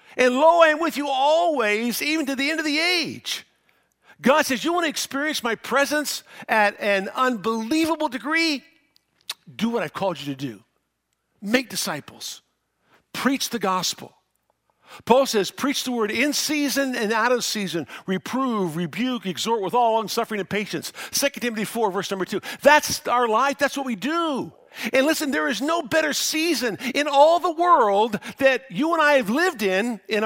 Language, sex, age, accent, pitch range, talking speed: English, male, 50-69, American, 195-290 Hz, 180 wpm